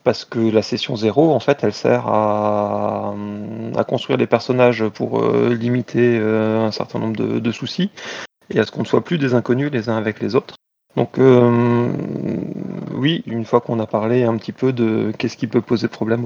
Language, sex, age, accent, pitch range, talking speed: French, male, 30-49, French, 110-125 Hz, 205 wpm